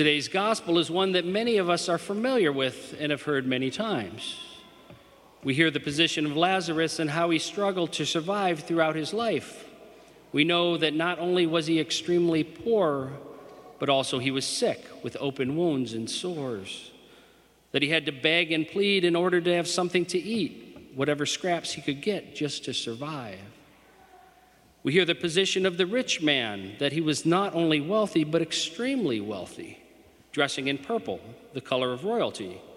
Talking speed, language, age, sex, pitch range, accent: 175 wpm, English, 50-69, male, 145-180 Hz, American